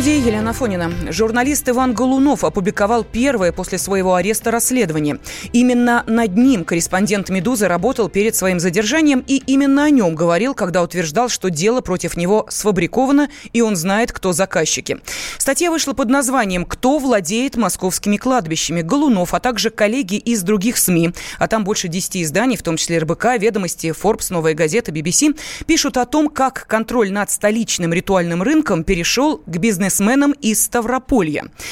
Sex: female